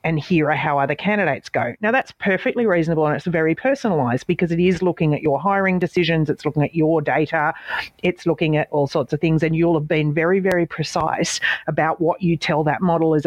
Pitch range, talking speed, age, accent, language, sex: 150-185 Hz, 220 wpm, 40-59, Australian, English, female